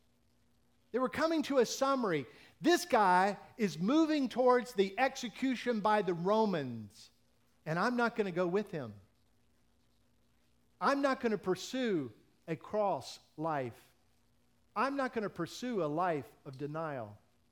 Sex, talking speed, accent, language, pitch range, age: male, 140 wpm, American, English, 145-225 Hz, 50-69